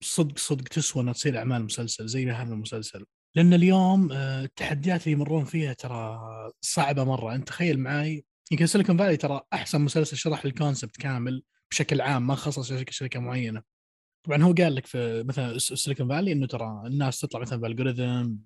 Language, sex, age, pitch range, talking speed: Arabic, male, 20-39, 125-150 Hz, 170 wpm